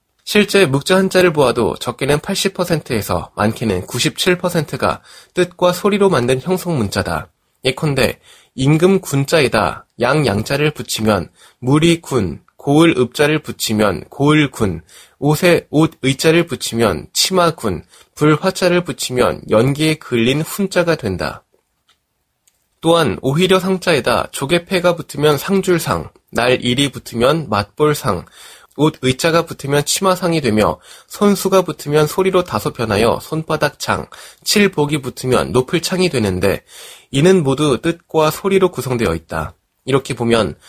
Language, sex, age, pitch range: Korean, male, 20-39, 120-175 Hz